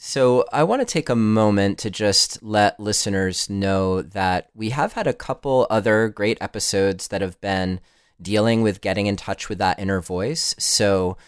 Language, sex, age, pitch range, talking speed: English, male, 30-49, 90-110 Hz, 180 wpm